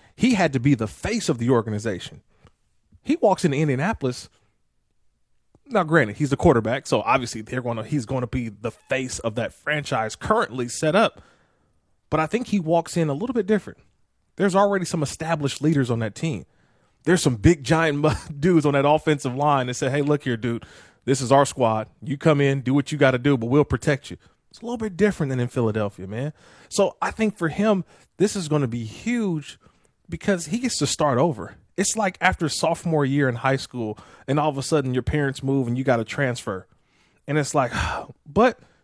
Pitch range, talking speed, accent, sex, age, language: 130-175 Hz, 210 wpm, American, male, 30-49, English